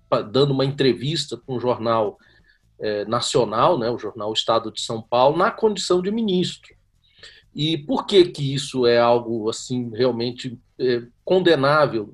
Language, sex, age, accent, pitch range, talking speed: Portuguese, male, 40-59, Brazilian, 120-180 Hz, 150 wpm